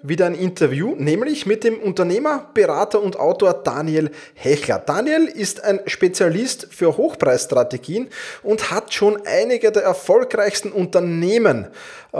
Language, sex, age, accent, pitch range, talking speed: German, male, 20-39, Austrian, 145-210 Hz, 125 wpm